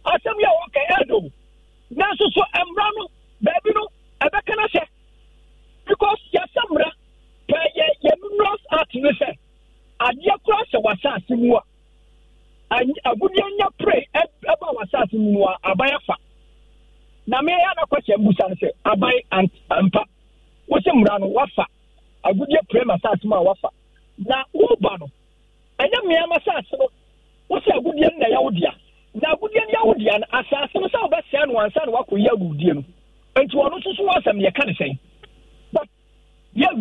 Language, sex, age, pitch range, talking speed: English, male, 50-69, 215-345 Hz, 110 wpm